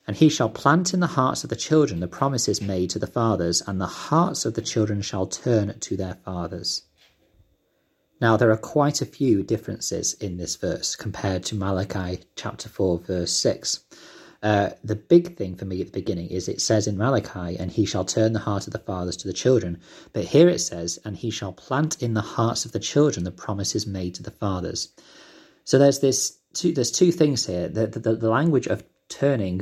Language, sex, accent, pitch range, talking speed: English, male, British, 95-125 Hz, 215 wpm